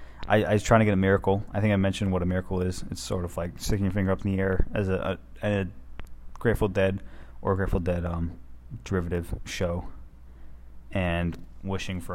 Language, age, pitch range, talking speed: English, 20-39, 65-95 Hz, 210 wpm